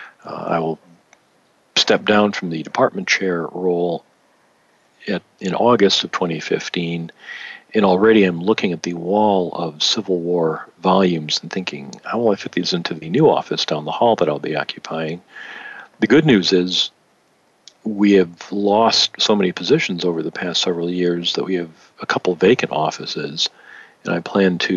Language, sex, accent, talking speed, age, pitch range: English, male, American, 165 wpm, 50-69, 85-100 Hz